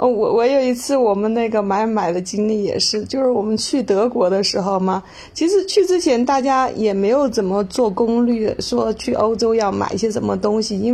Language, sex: Chinese, female